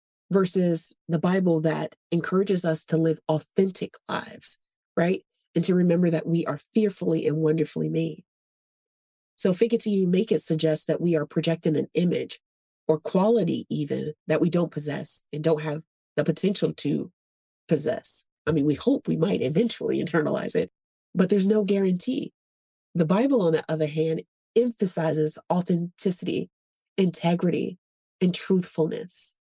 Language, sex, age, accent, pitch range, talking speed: English, female, 30-49, American, 160-200 Hz, 150 wpm